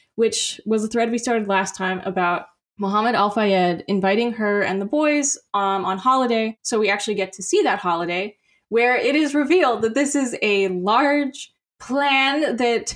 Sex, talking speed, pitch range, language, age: female, 175 wpm, 185-240 Hz, English, 10-29